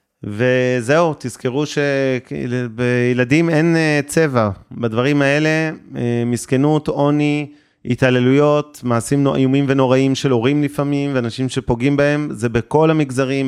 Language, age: Hebrew, 30-49